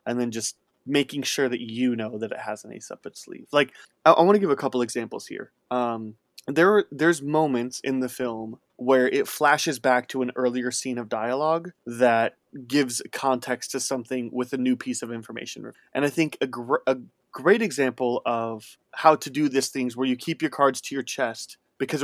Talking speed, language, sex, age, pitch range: 210 wpm, English, male, 20-39, 115-135 Hz